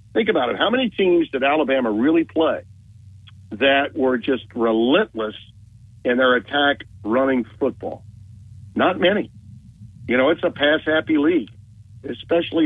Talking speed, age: 135 wpm, 50-69